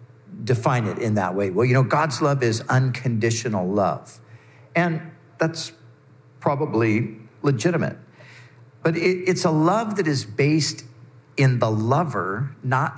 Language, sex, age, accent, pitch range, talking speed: English, male, 50-69, American, 120-155 Hz, 130 wpm